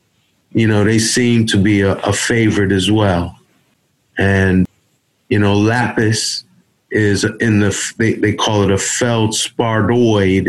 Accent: American